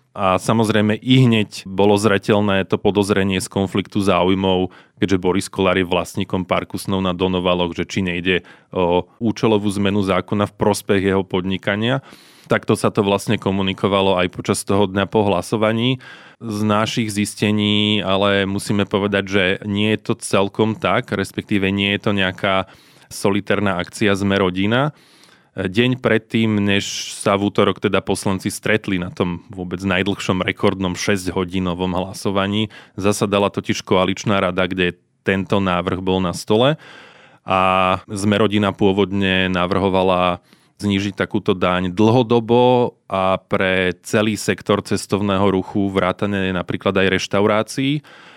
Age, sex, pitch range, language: 20-39, male, 95-105 Hz, Slovak